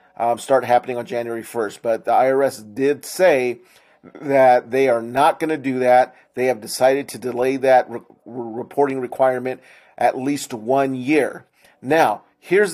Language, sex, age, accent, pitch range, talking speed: English, male, 40-59, American, 125-160 Hz, 155 wpm